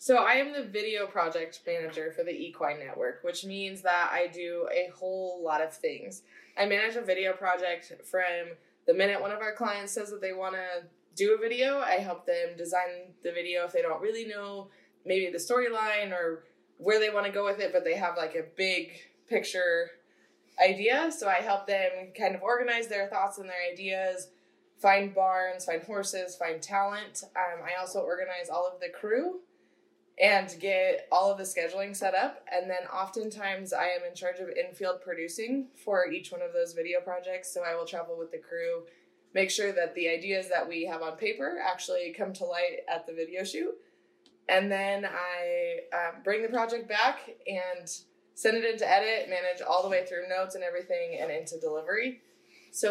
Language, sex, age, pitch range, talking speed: English, female, 20-39, 180-245 Hz, 195 wpm